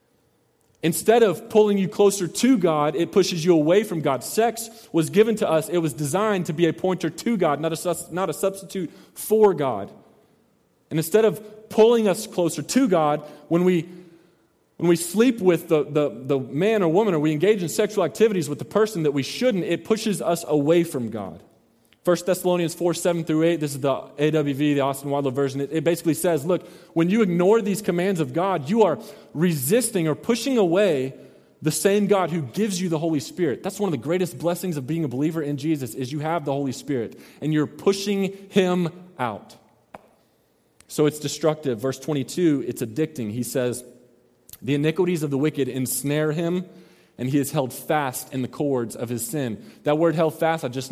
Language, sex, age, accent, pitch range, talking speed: English, male, 30-49, American, 145-185 Hz, 200 wpm